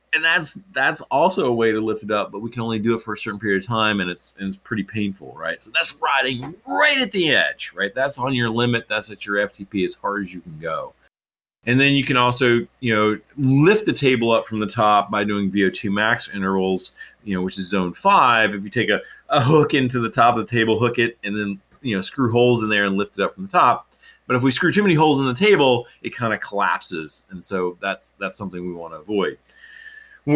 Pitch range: 100-125 Hz